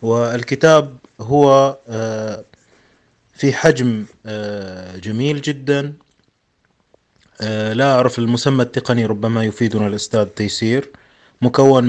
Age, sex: 30-49, male